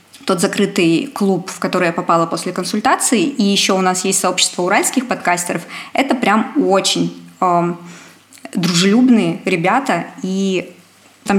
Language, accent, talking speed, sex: Russian, native, 130 wpm, female